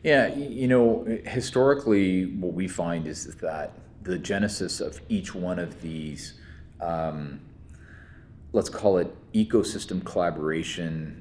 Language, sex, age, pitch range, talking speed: English, male, 30-49, 80-95 Hz, 120 wpm